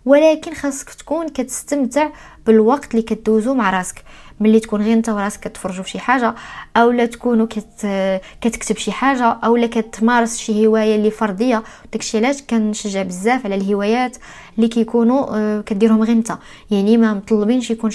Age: 20-39